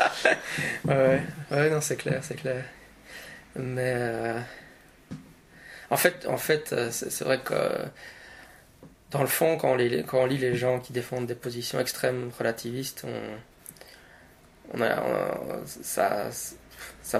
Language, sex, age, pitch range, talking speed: French, male, 20-39, 115-130 Hz, 135 wpm